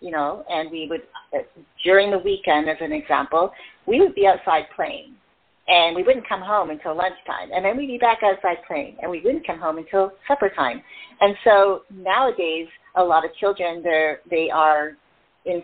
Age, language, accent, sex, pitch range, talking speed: 40-59, English, American, female, 155-185 Hz, 190 wpm